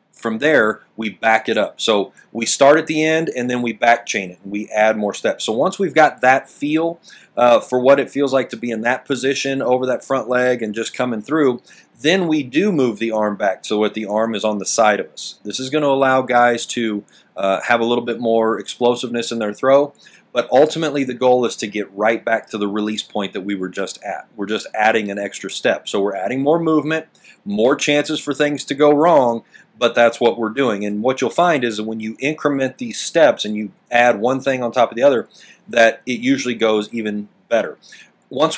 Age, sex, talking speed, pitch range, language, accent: 30-49, male, 230 wpm, 110-140 Hz, English, American